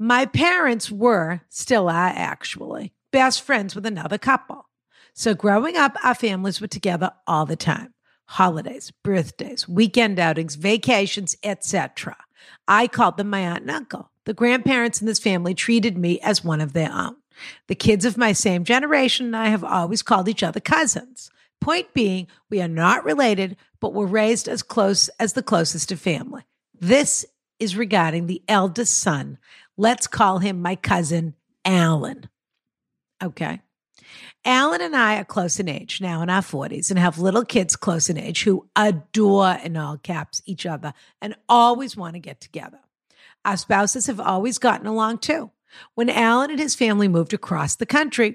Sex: female